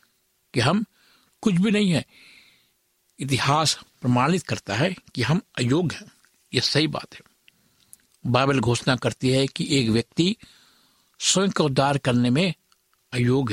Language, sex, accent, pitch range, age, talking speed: Hindi, male, native, 125-150 Hz, 60-79, 135 wpm